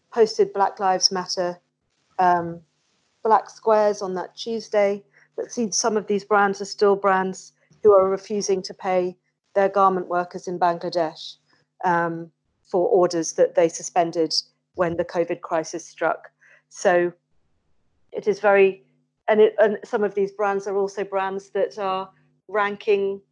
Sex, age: female, 40-59